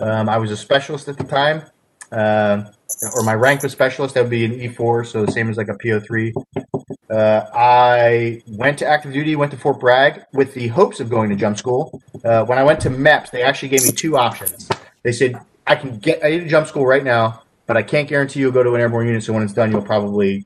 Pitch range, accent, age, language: 115-140 Hz, American, 30-49, English